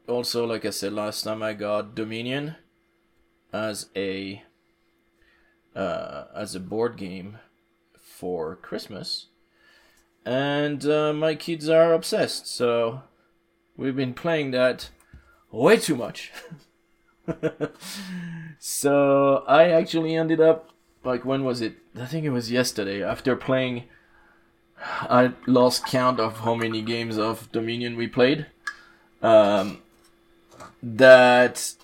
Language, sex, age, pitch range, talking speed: English, male, 20-39, 105-135 Hz, 115 wpm